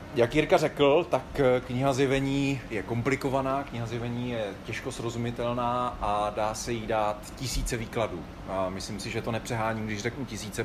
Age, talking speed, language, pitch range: 30-49, 160 wpm, Czech, 105-130 Hz